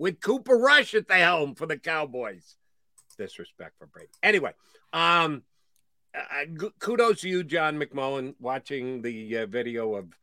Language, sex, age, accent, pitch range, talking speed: English, male, 50-69, American, 130-190 Hz, 145 wpm